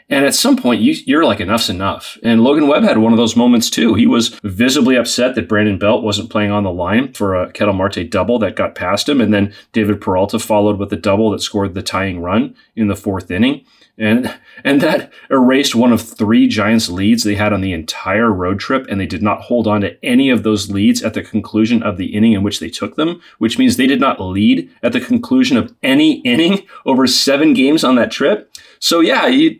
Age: 30-49